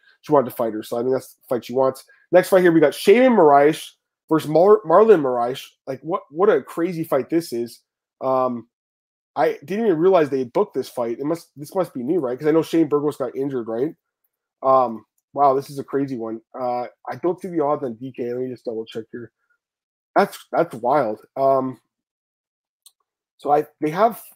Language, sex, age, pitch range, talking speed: English, male, 20-39, 125-165 Hz, 210 wpm